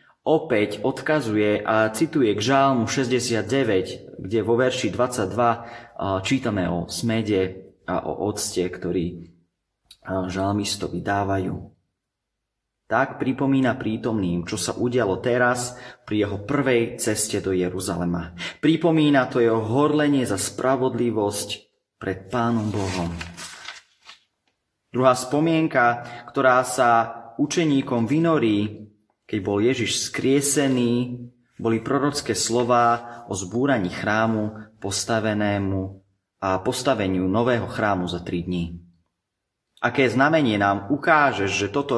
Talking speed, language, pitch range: 105 wpm, Slovak, 95-130 Hz